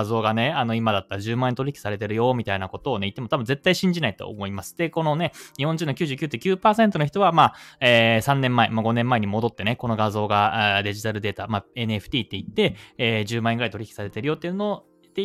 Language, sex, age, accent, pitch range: Japanese, male, 20-39, native, 105-140 Hz